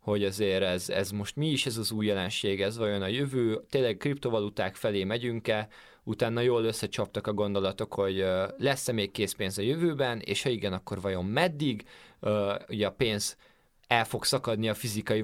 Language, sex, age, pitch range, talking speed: Hungarian, male, 20-39, 100-125 Hz, 175 wpm